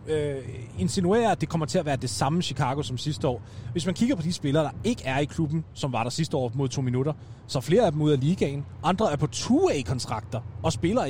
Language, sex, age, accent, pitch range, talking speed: English, male, 30-49, Danish, 120-160 Hz, 255 wpm